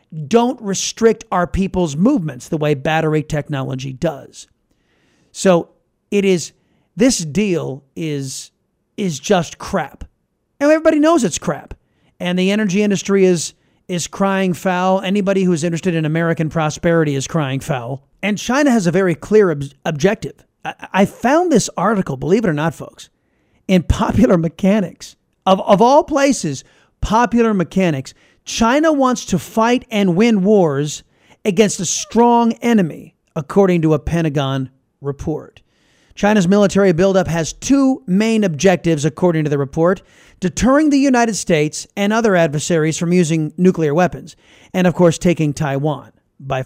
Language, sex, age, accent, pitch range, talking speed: English, male, 40-59, American, 160-205 Hz, 145 wpm